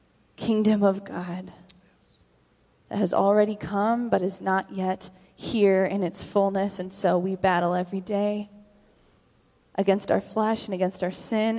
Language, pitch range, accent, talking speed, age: English, 185-210 Hz, American, 145 wpm, 20-39